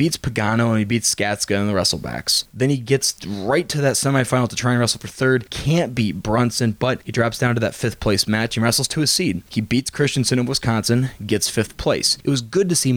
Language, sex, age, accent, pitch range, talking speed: English, male, 20-39, American, 105-125 Hz, 240 wpm